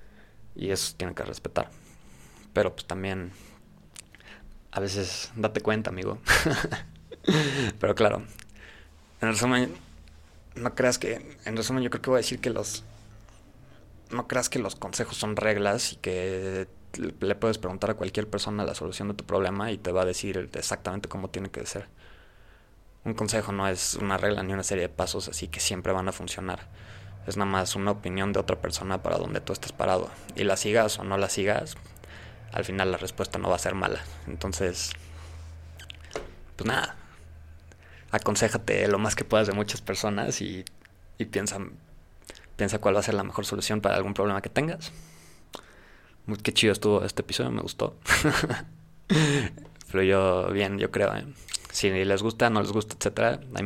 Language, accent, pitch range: Spanish, Mexican, 90-110 Hz